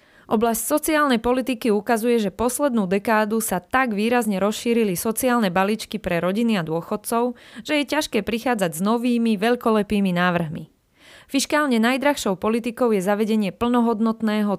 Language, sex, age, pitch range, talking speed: Slovak, female, 20-39, 200-245 Hz, 130 wpm